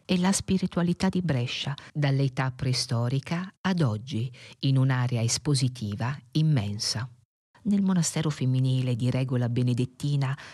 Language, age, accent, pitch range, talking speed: Italian, 50-69, native, 125-155 Hz, 110 wpm